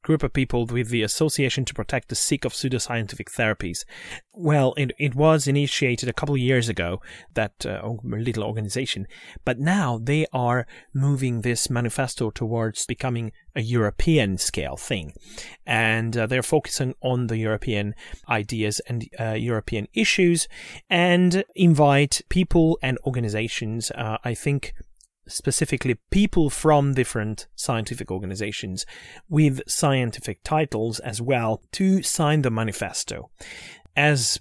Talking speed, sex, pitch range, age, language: 135 wpm, male, 115-140 Hz, 30-49, English